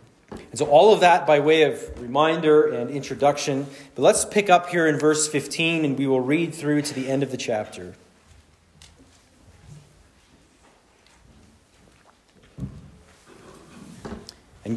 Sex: male